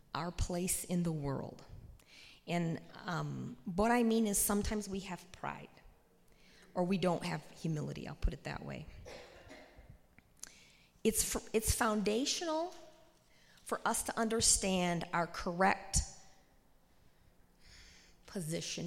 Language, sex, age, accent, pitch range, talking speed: English, female, 40-59, American, 170-215 Hz, 110 wpm